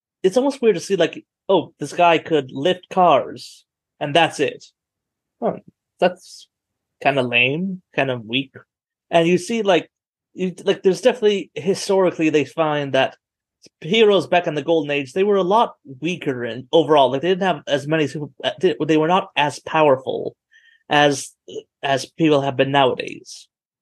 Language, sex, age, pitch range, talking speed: English, male, 30-49, 140-180 Hz, 165 wpm